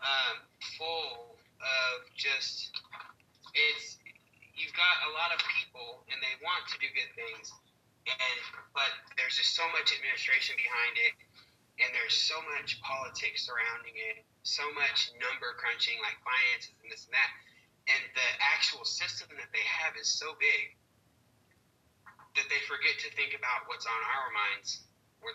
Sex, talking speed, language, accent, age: male, 155 wpm, English, American, 30-49